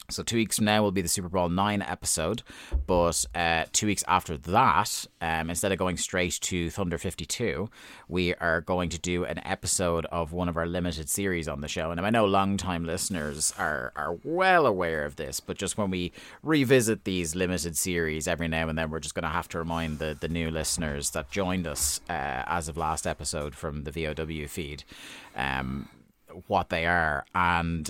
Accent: British